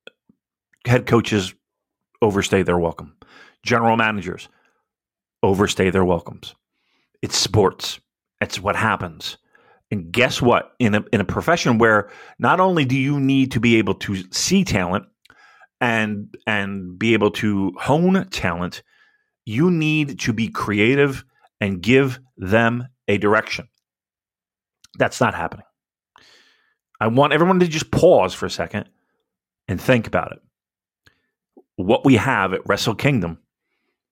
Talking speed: 130 wpm